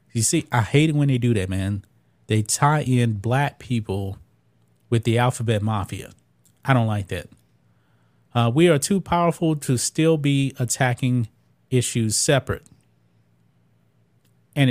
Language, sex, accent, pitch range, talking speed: English, male, American, 110-145 Hz, 145 wpm